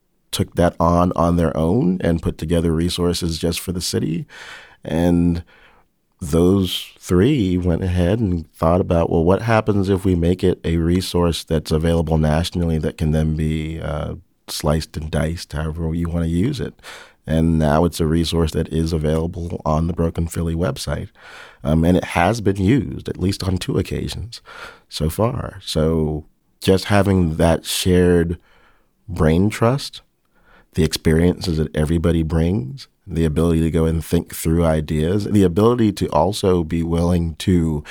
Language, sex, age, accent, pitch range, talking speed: English, male, 40-59, American, 80-90 Hz, 160 wpm